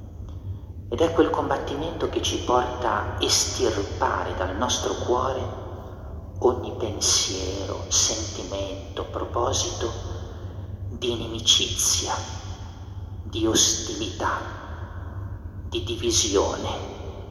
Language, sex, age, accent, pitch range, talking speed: Italian, male, 40-59, native, 90-100 Hz, 75 wpm